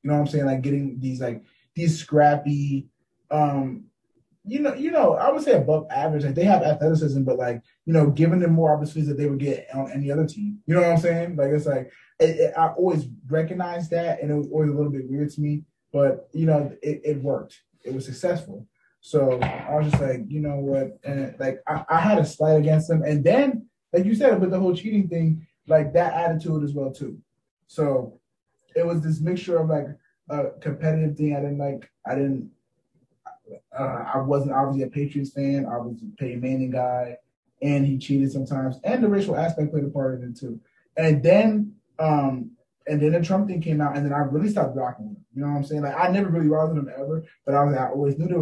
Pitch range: 140-170 Hz